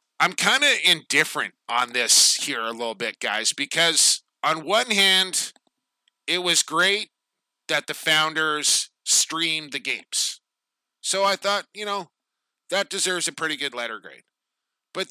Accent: American